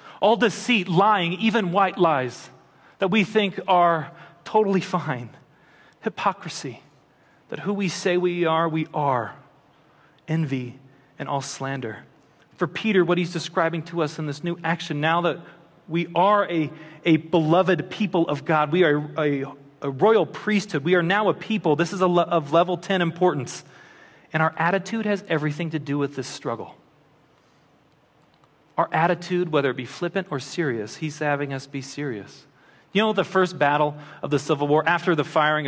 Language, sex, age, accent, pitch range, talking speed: English, male, 40-59, American, 150-180 Hz, 170 wpm